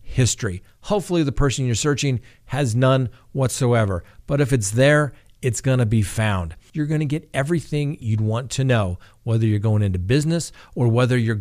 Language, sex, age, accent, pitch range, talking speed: English, male, 50-69, American, 110-135 Hz, 185 wpm